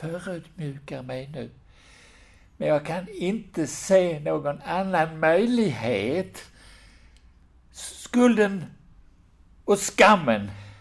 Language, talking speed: Swedish, 80 wpm